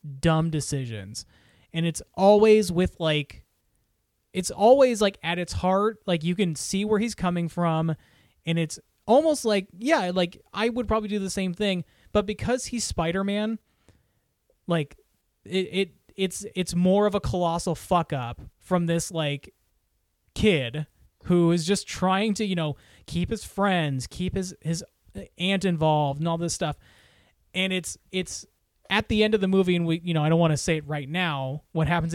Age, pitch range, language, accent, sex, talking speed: 20-39, 155-195 Hz, English, American, male, 175 wpm